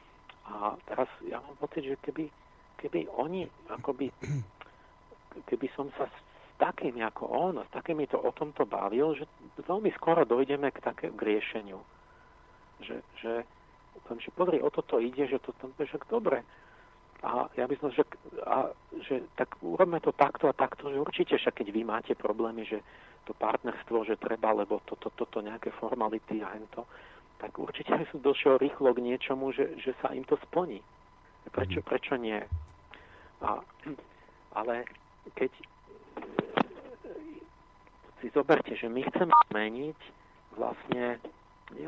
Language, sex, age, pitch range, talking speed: Slovak, male, 50-69, 110-155 Hz, 160 wpm